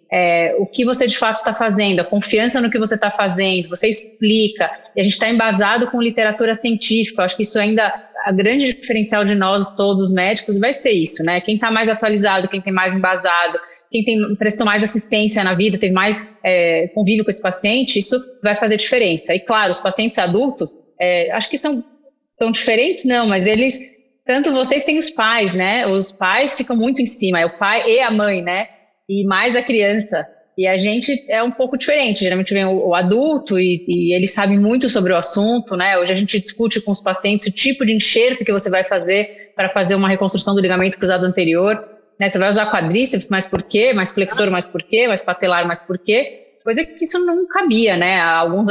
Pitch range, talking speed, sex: 185-230 Hz, 215 wpm, female